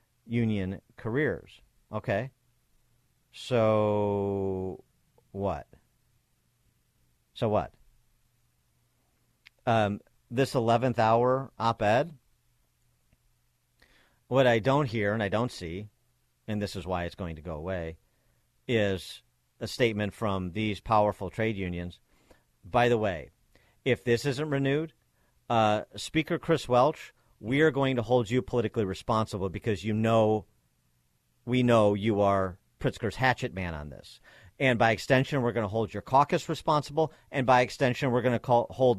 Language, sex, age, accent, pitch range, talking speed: English, male, 50-69, American, 95-125 Hz, 130 wpm